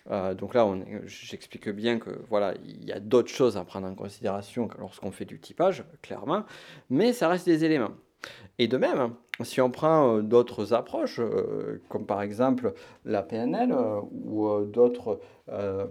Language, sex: French, male